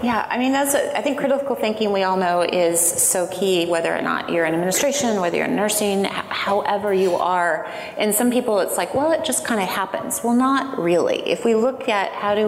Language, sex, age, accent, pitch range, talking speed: English, female, 30-49, American, 180-225 Hz, 235 wpm